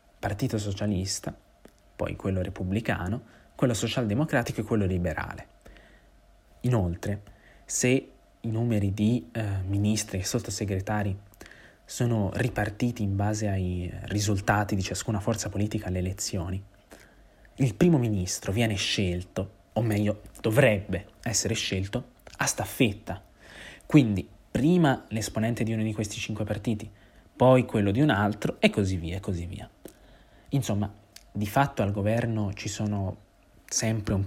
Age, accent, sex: 20-39, native, male